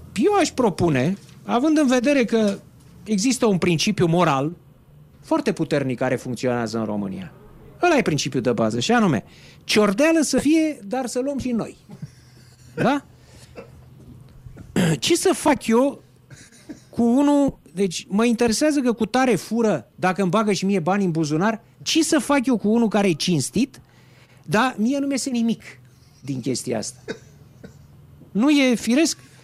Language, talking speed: Romanian, 150 wpm